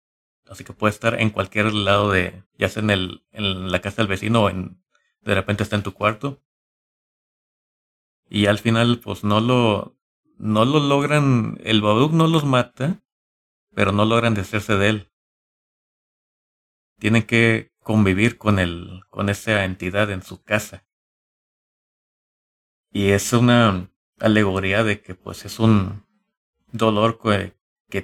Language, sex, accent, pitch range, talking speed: Spanish, male, Mexican, 95-115 Hz, 145 wpm